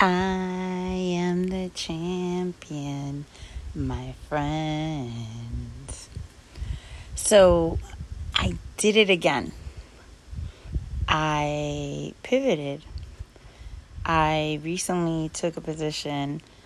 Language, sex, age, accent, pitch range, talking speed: English, female, 30-49, American, 145-225 Hz, 65 wpm